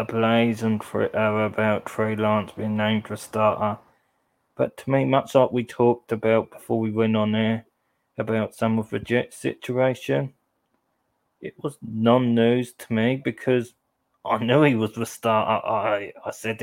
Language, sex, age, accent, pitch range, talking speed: English, male, 20-39, British, 110-125 Hz, 160 wpm